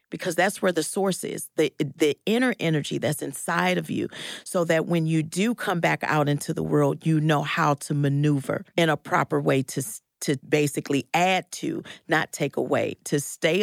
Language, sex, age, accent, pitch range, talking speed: English, female, 40-59, American, 145-180 Hz, 195 wpm